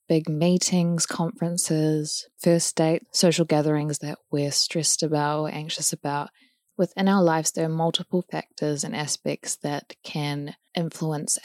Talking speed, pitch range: 130 wpm, 145-165 Hz